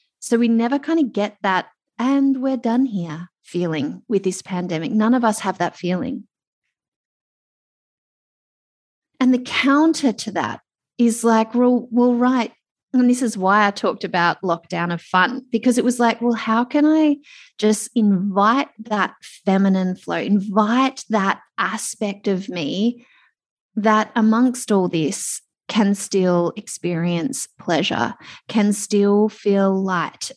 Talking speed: 140 wpm